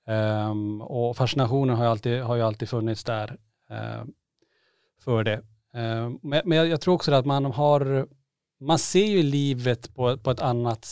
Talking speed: 175 wpm